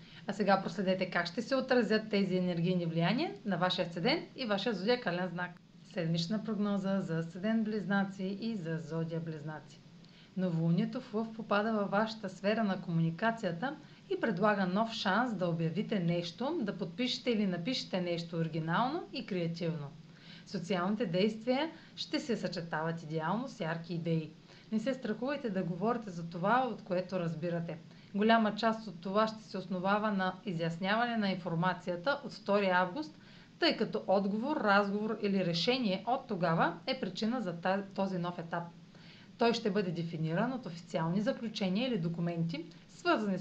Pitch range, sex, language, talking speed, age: 175-220 Hz, female, Bulgarian, 150 wpm, 30-49